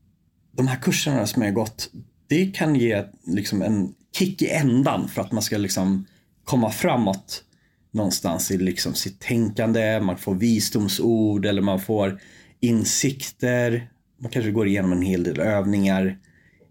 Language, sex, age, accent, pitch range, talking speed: Swedish, male, 30-49, native, 95-125 Hz, 140 wpm